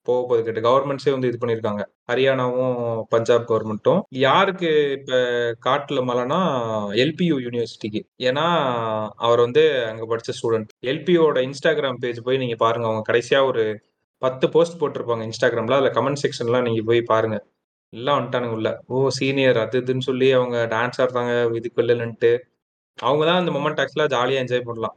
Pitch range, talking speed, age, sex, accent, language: 120-155 Hz, 145 wpm, 30-49, male, native, Tamil